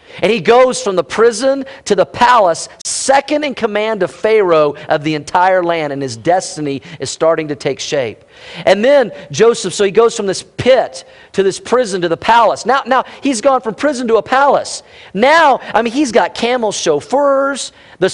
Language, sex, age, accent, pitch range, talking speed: English, male, 40-59, American, 185-265 Hz, 190 wpm